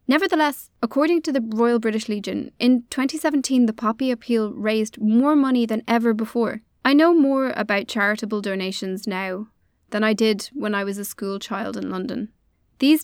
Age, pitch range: 20-39, 200-240 Hz